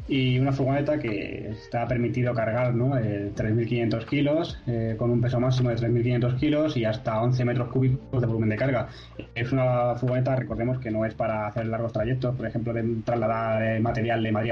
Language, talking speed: Spanish, 190 wpm